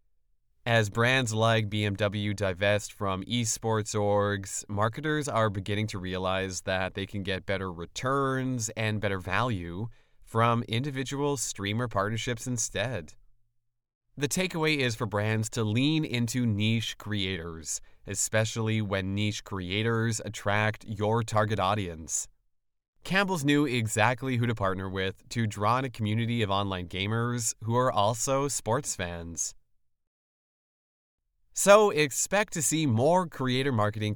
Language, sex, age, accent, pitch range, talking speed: English, male, 30-49, American, 95-120 Hz, 125 wpm